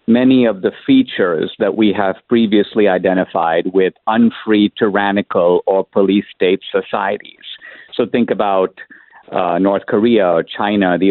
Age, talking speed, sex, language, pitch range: 50-69, 130 wpm, male, English, 100-130 Hz